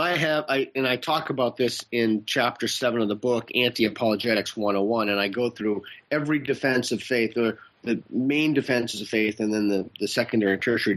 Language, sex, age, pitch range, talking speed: English, male, 30-49, 115-135 Hz, 195 wpm